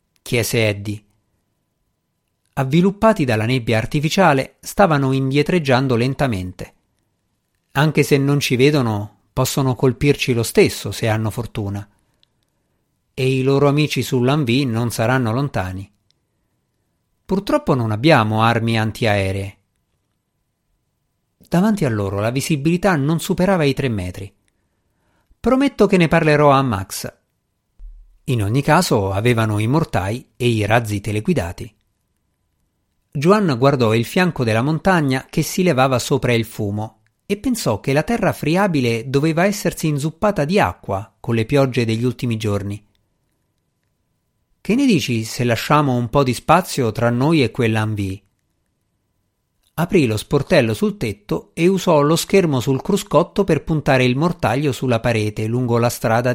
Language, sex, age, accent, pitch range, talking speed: Italian, male, 50-69, native, 110-150 Hz, 130 wpm